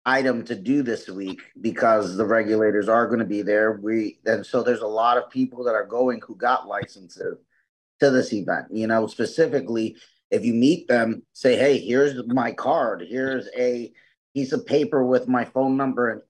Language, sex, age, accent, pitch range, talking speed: English, male, 30-49, American, 110-125 Hz, 190 wpm